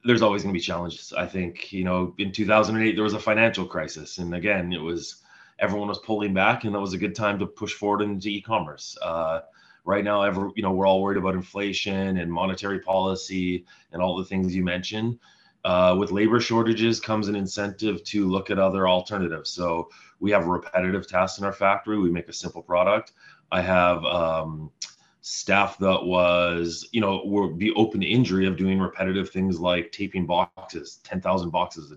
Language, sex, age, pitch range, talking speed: English, male, 30-49, 90-100 Hz, 195 wpm